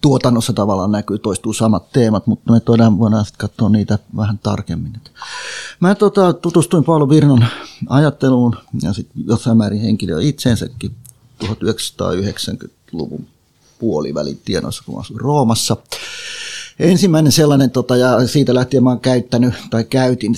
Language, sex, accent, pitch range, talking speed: Finnish, male, native, 110-130 Hz, 115 wpm